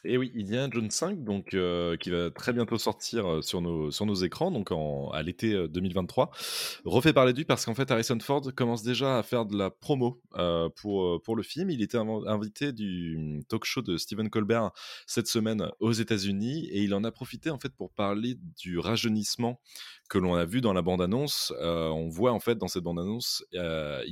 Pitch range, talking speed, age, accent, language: 90-120 Hz, 210 wpm, 20-39, French, French